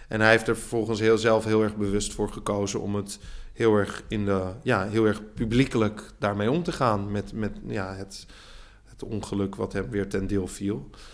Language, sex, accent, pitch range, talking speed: Dutch, male, Dutch, 100-115 Hz, 205 wpm